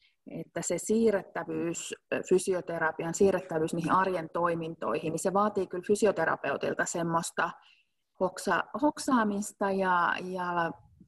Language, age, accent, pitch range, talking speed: English, 30-49, Finnish, 175-220 Hz, 95 wpm